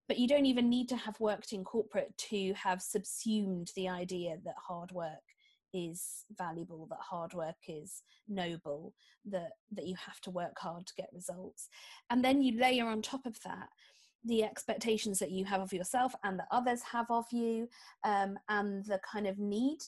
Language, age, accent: English, 40-59, British